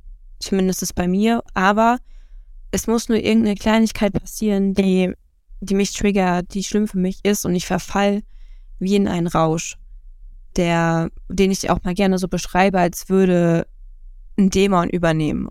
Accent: German